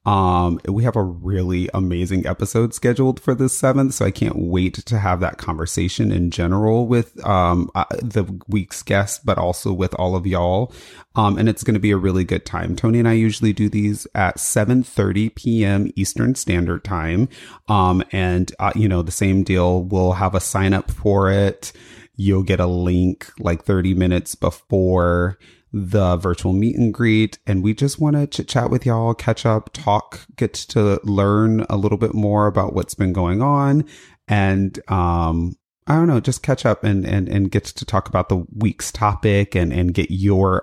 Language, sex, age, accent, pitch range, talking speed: English, male, 30-49, American, 95-115 Hz, 190 wpm